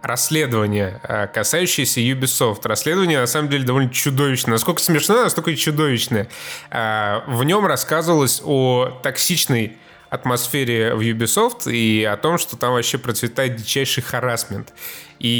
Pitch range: 115-140 Hz